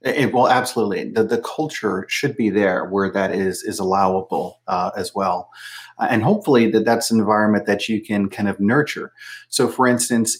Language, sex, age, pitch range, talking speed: English, male, 30-49, 100-120 Hz, 190 wpm